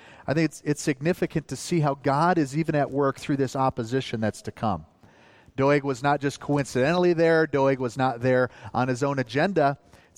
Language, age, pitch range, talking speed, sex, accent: English, 40-59, 135-180 Hz, 200 wpm, male, American